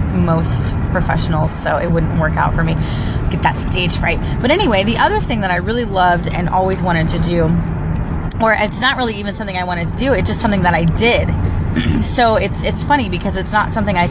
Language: English